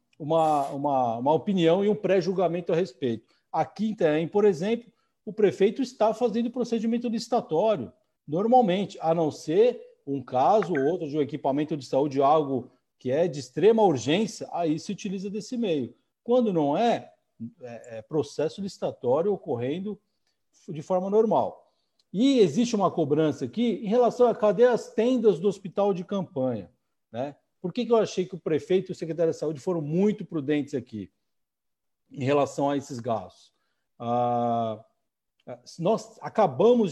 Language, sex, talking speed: Portuguese, male, 150 wpm